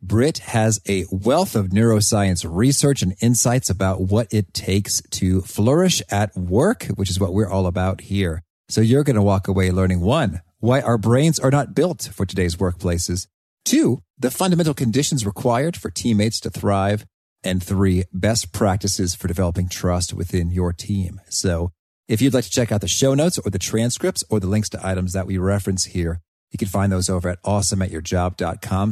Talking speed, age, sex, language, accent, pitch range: 185 wpm, 40-59, male, English, American, 95-120 Hz